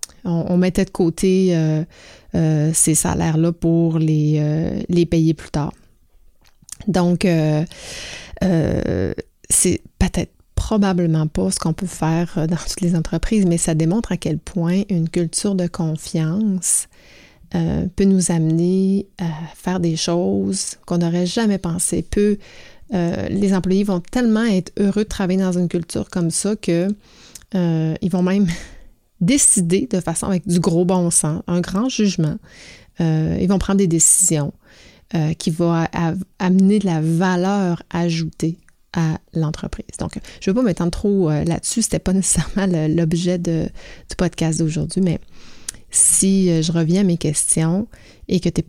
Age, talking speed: 30-49, 150 wpm